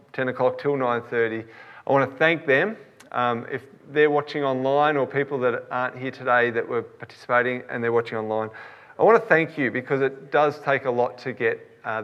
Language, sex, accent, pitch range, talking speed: English, male, Australian, 120-145 Hz, 200 wpm